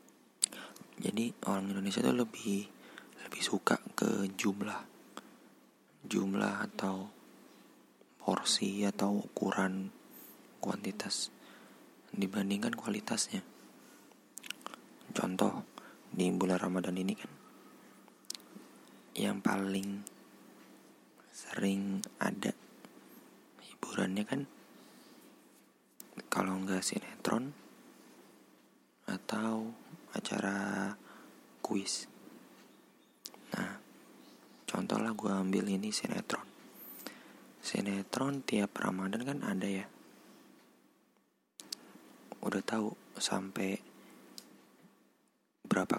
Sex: male